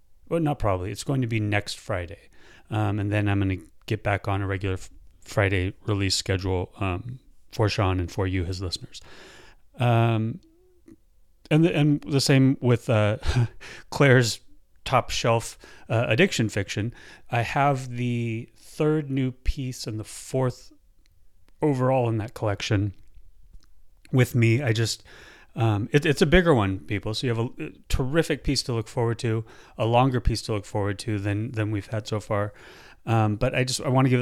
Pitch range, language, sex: 100-125 Hz, English, male